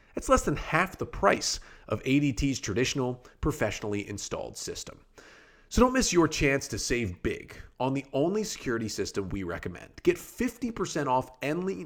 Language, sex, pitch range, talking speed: English, male, 105-160 Hz, 155 wpm